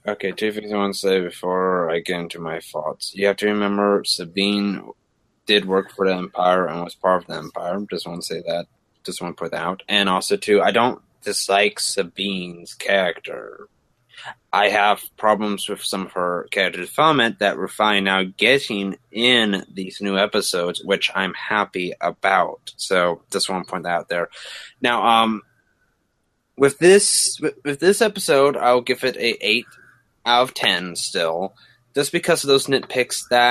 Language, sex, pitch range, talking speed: English, male, 95-125 Hz, 180 wpm